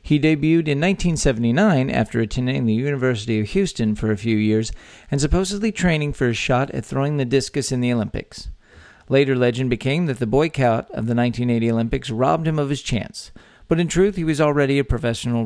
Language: English